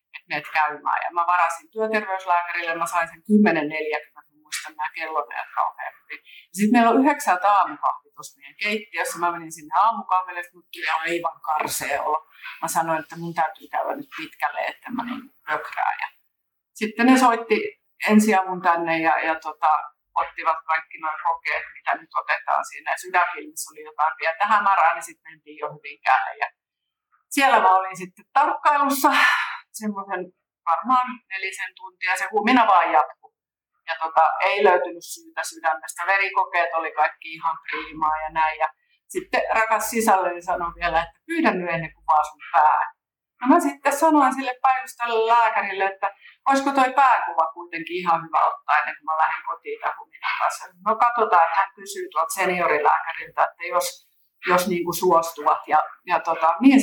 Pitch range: 160-230 Hz